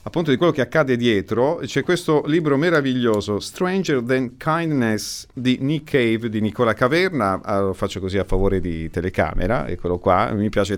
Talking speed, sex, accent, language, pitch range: 165 wpm, male, native, Italian, 100-145 Hz